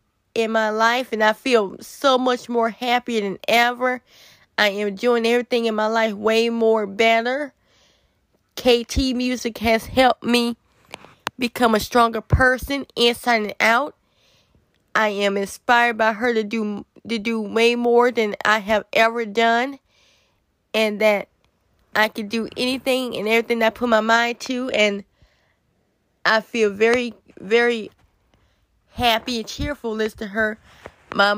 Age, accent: 20-39, American